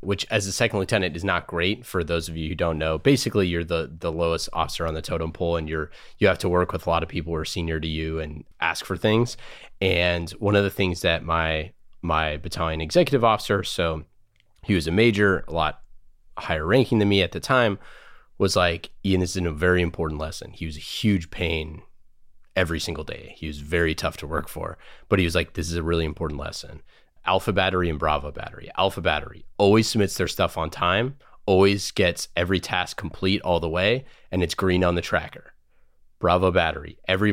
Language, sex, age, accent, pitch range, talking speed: English, male, 30-49, American, 80-100 Hz, 215 wpm